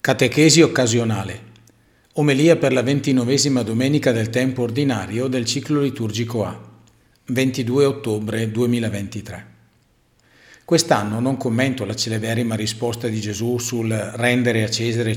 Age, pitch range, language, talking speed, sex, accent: 50-69, 110-135 Hz, Italian, 115 wpm, male, native